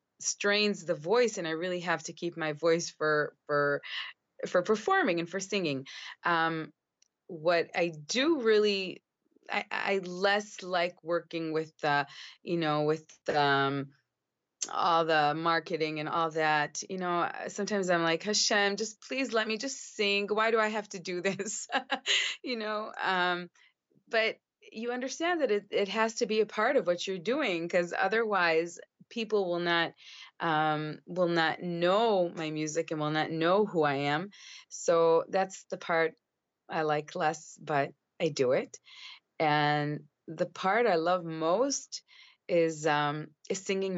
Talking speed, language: 160 wpm, English